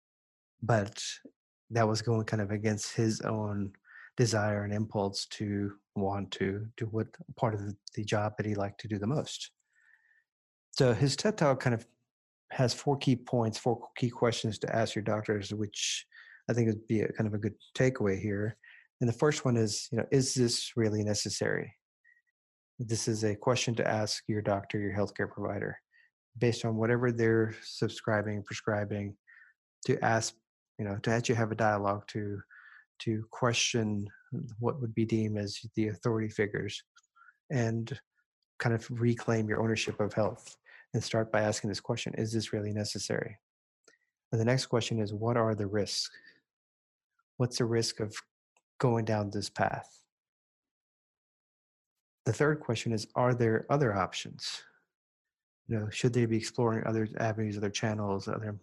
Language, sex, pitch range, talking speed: English, male, 105-120 Hz, 160 wpm